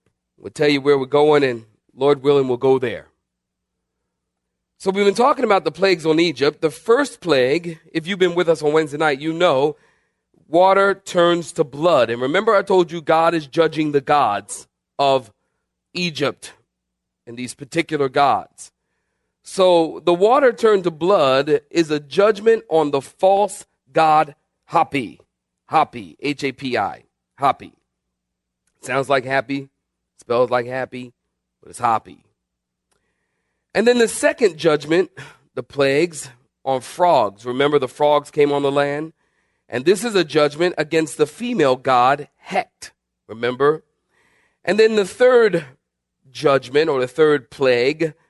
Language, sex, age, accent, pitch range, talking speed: English, male, 40-59, American, 125-170 Hz, 145 wpm